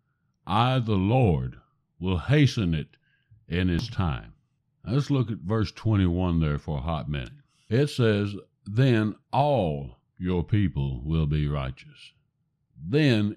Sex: male